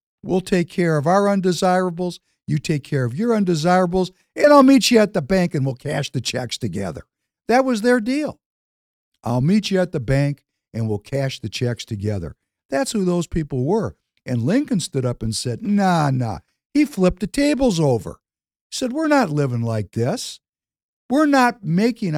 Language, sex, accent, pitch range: English, male, American, 120-185 Hz